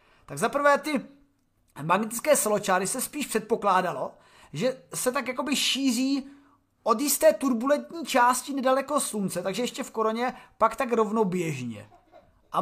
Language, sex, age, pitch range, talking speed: Czech, male, 30-49, 195-255 Hz, 130 wpm